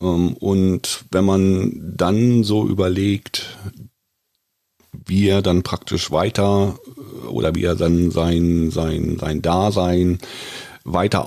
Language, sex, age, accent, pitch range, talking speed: German, male, 40-59, German, 95-120 Hz, 105 wpm